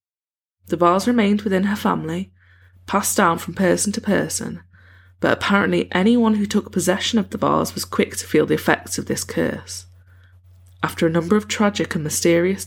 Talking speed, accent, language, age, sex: 175 wpm, British, English, 20-39, female